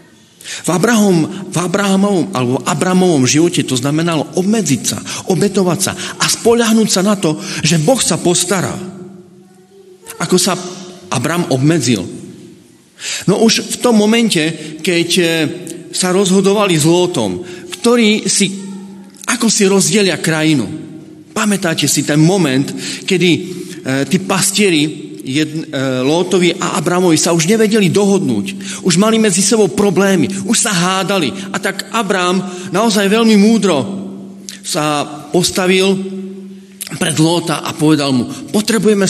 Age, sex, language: 40-59, male, Slovak